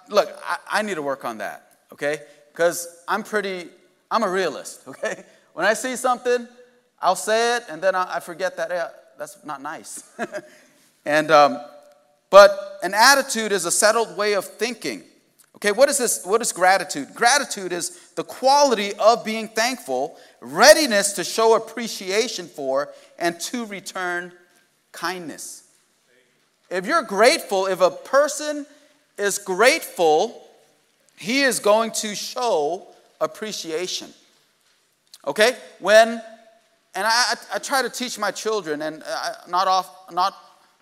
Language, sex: English, male